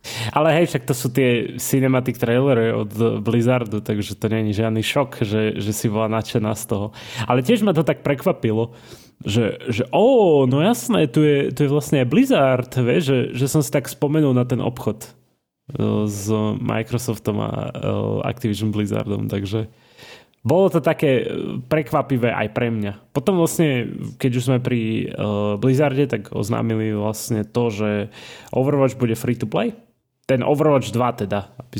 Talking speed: 160 wpm